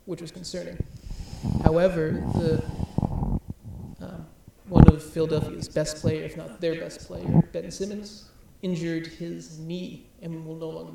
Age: 30-49